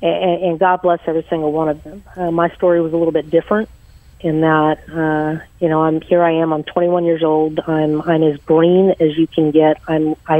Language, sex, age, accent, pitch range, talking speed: English, female, 40-59, American, 155-170 Hz, 220 wpm